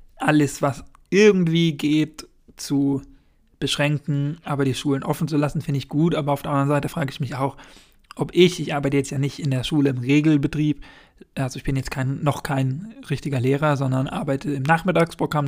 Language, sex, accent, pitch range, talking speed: German, male, German, 135-150 Hz, 190 wpm